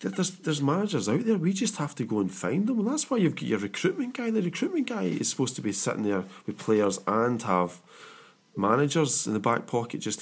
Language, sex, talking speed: English, male, 235 wpm